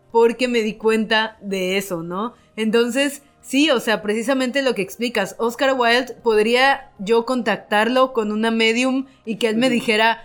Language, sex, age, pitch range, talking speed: Spanish, female, 30-49, 210-245 Hz, 165 wpm